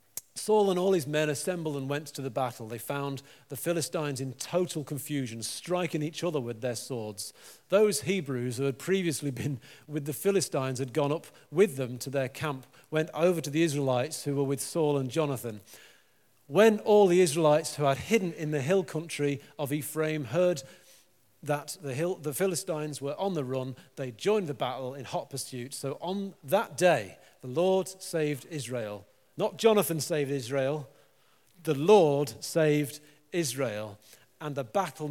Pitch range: 130-175 Hz